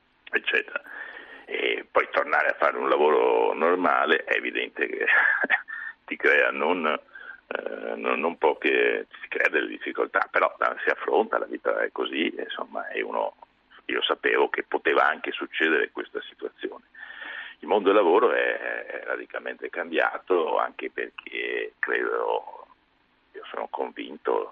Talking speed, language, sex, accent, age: 130 wpm, Italian, male, native, 50-69